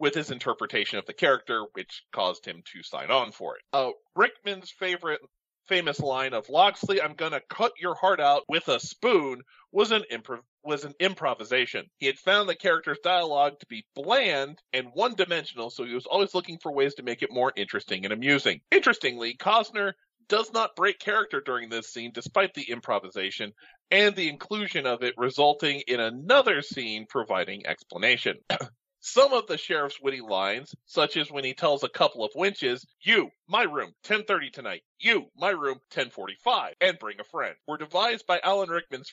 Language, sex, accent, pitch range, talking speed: English, male, American, 135-195 Hz, 180 wpm